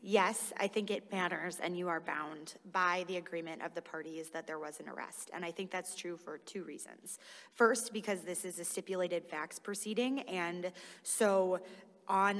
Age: 20-39